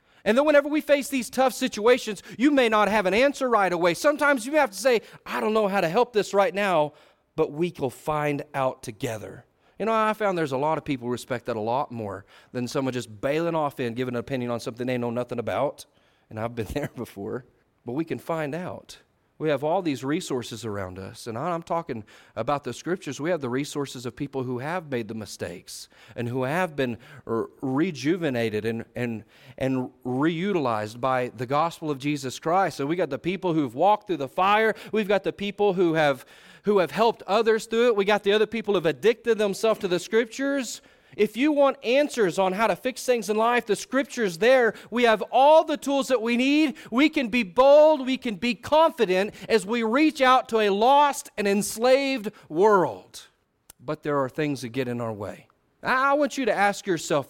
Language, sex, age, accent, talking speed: English, male, 40-59, American, 215 wpm